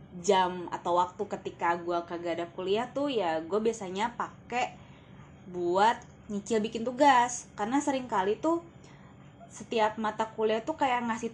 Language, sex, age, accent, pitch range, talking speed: Indonesian, female, 20-39, native, 175-220 Hz, 145 wpm